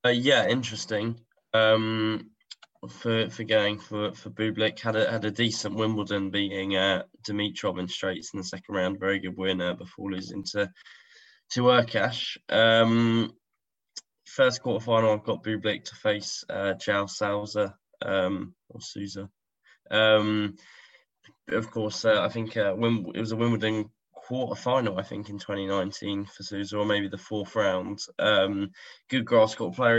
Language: English